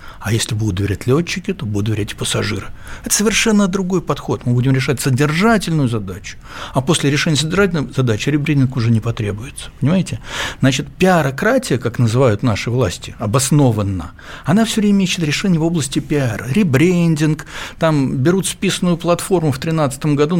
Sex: male